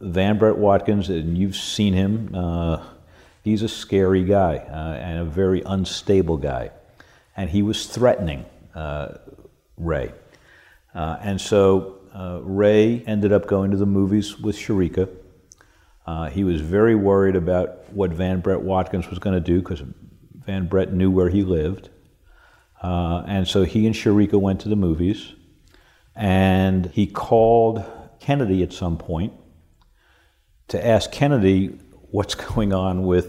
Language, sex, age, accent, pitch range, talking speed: English, male, 50-69, American, 90-110 Hz, 145 wpm